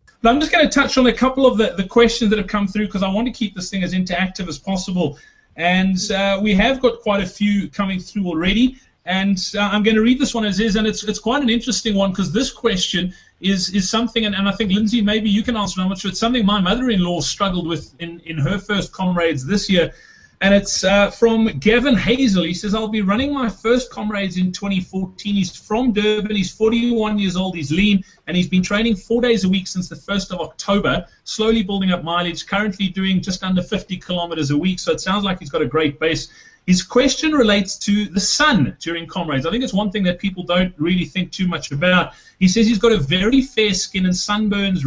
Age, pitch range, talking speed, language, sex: 30-49, 175-210 Hz, 235 wpm, English, male